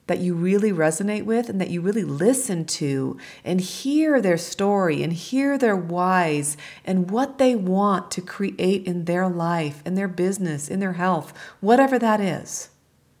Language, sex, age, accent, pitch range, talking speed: English, female, 40-59, American, 170-205 Hz, 170 wpm